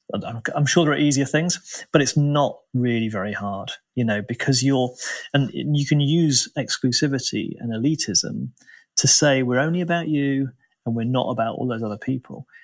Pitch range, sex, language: 110-140 Hz, male, English